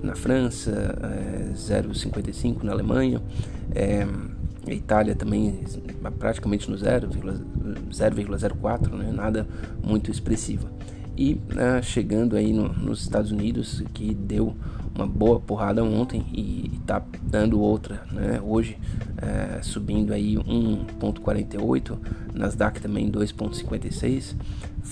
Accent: Brazilian